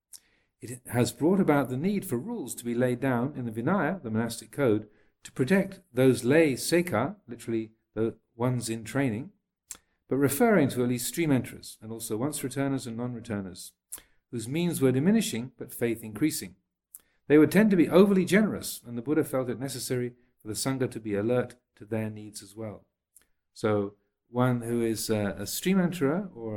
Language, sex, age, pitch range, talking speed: English, male, 50-69, 110-130 Hz, 175 wpm